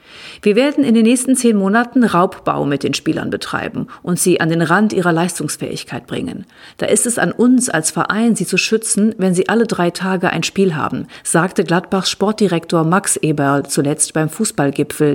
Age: 50-69